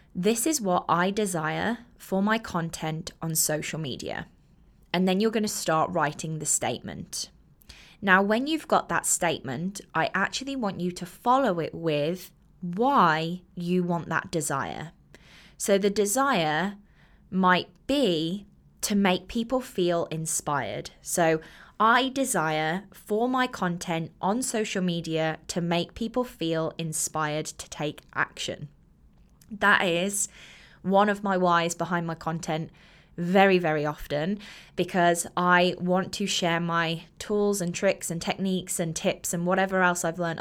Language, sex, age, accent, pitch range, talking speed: English, female, 20-39, British, 165-200 Hz, 145 wpm